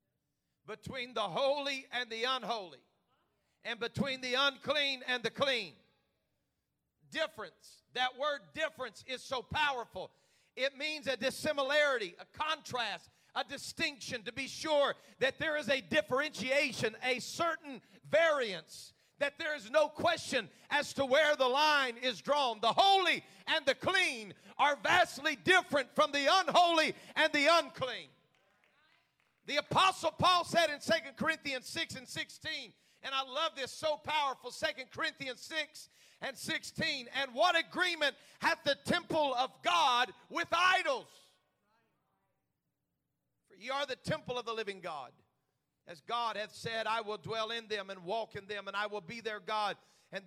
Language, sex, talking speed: English, male, 150 wpm